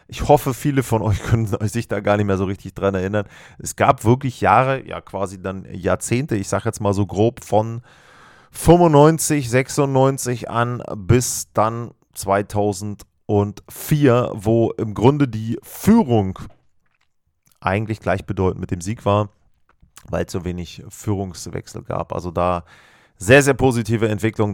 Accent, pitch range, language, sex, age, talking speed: German, 100-125 Hz, German, male, 30-49, 145 wpm